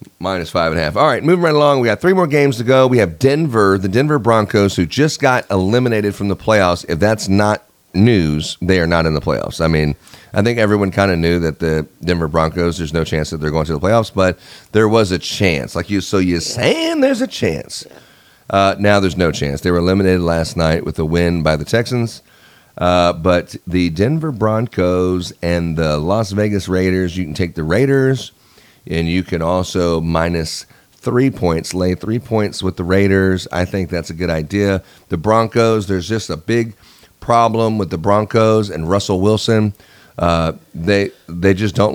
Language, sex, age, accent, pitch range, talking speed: English, male, 30-49, American, 85-110 Hz, 205 wpm